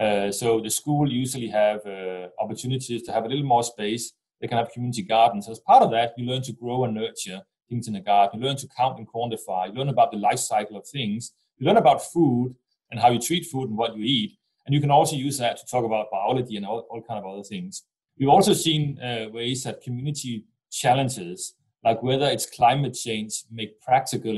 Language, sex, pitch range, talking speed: English, male, 110-135 Hz, 225 wpm